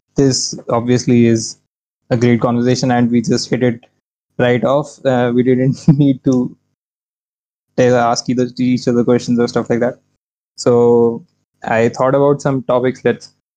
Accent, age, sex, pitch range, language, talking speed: Indian, 20-39, male, 115-130 Hz, English, 145 wpm